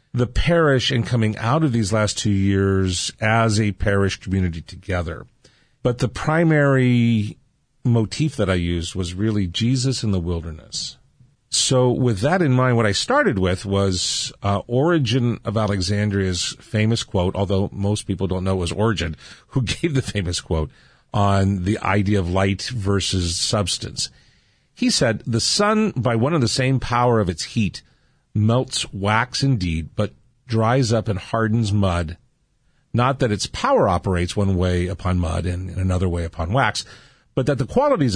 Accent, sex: American, male